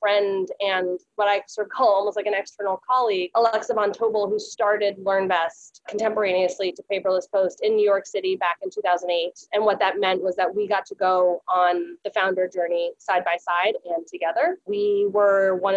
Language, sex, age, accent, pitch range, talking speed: English, female, 20-39, American, 190-240 Hz, 200 wpm